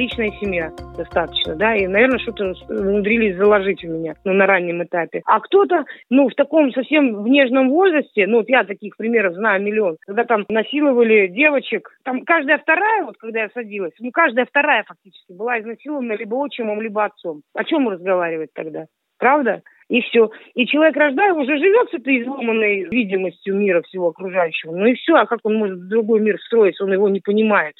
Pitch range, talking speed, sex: 190-255 Hz, 185 wpm, female